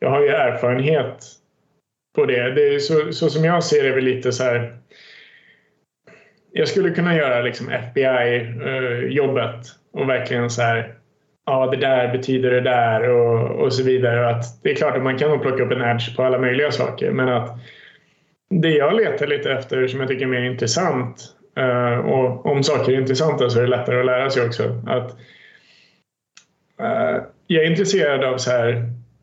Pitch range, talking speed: 120-140 Hz, 180 wpm